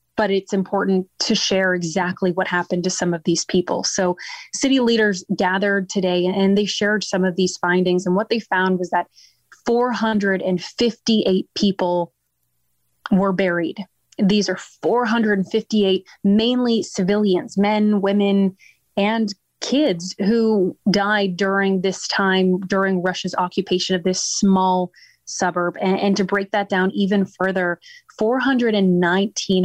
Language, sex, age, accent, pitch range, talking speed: English, female, 20-39, American, 185-215 Hz, 130 wpm